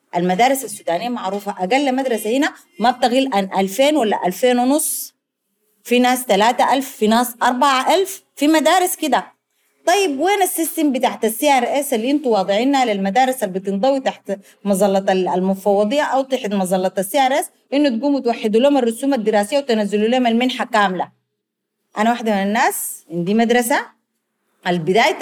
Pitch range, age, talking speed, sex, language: 205-275 Hz, 30-49, 150 wpm, female, Arabic